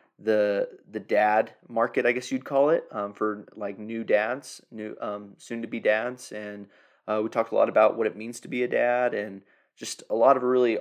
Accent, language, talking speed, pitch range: American, English, 210 wpm, 110-120 Hz